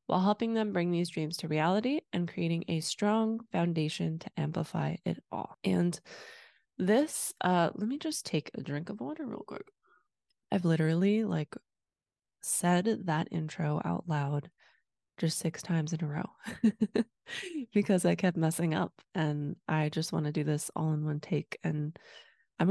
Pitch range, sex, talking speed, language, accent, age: 155-200 Hz, female, 165 wpm, English, American, 20-39